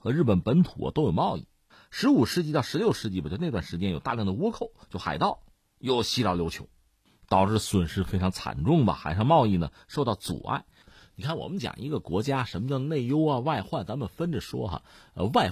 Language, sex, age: Chinese, male, 50-69